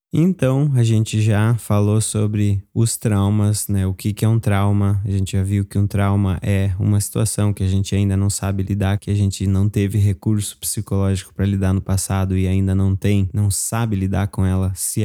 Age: 20-39